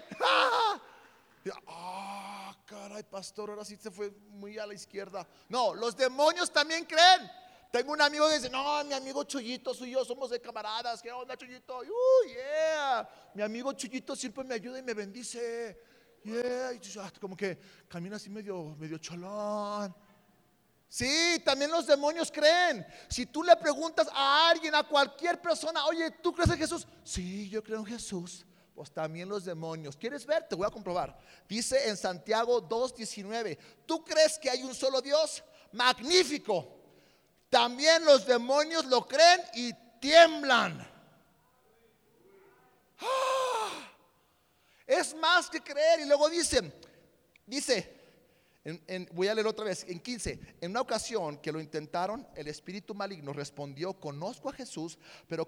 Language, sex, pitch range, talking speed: Spanish, male, 200-300 Hz, 150 wpm